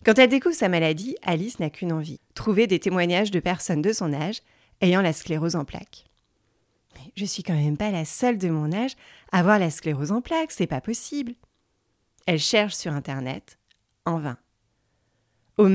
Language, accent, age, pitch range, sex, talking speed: French, French, 30-49, 150-205 Hz, female, 185 wpm